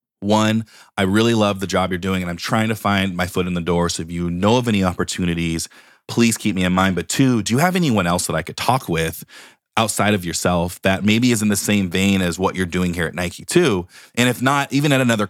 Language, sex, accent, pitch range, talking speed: English, male, American, 85-110 Hz, 260 wpm